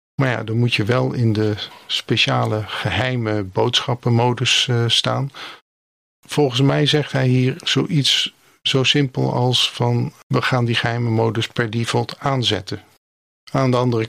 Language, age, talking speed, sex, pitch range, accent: Dutch, 50-69, 145 wpm, male, 110-135 Hz, Dutch